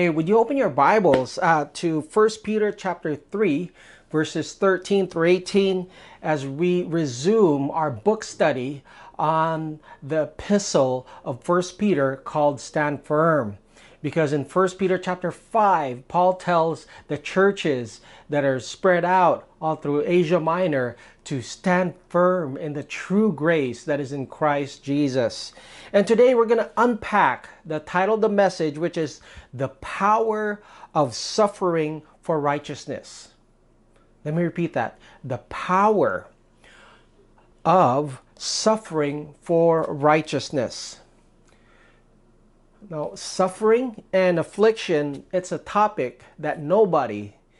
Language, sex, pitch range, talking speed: English, male, 150-185 Hz, 125 wpm